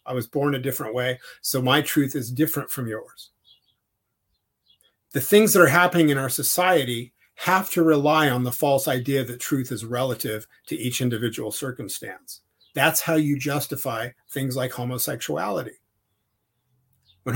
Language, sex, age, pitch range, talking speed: English, male, 40-59, 125-155 Hz, 150 wpm